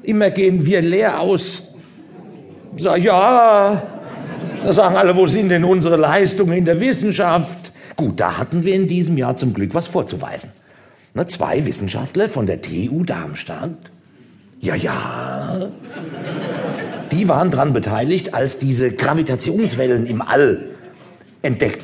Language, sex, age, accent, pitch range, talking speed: German, male, 50-69, German, 160-205 Hz, 135 wpm